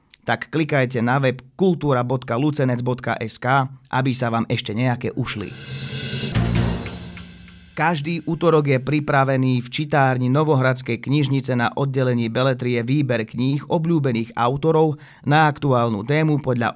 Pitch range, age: 115-150 Hz, 30-49